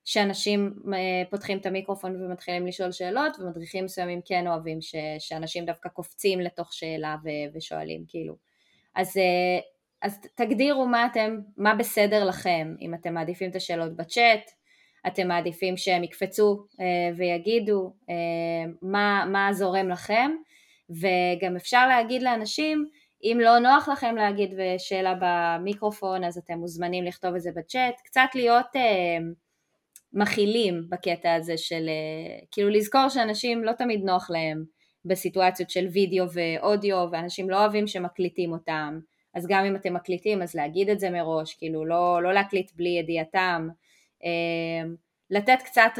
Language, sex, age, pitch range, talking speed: Hebrew, female, 20-39, 170-205 Hz, 135 wpm